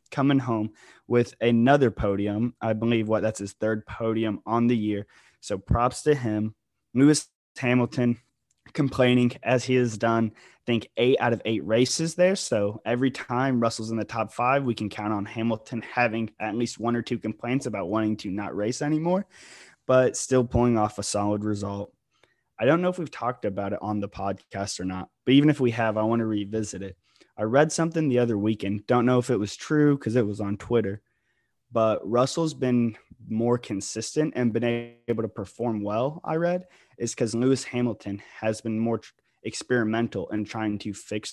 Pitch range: 105-125 Hz